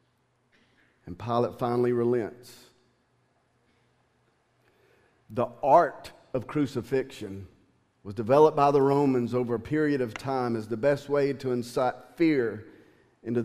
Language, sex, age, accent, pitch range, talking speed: English, male, 40-59, American, 120-140 Hz, 115 wpm